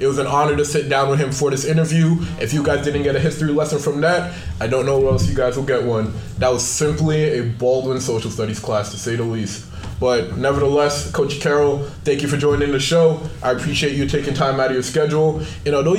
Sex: male